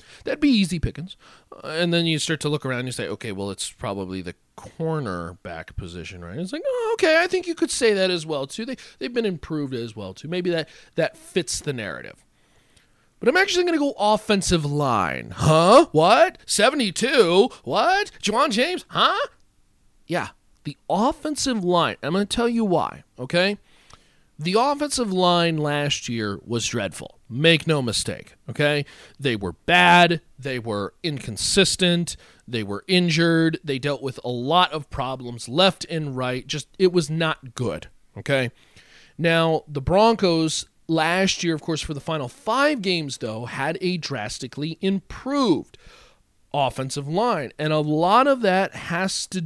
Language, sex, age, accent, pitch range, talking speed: English, male, 40-59, American, 125-190 Hz, 165 wpm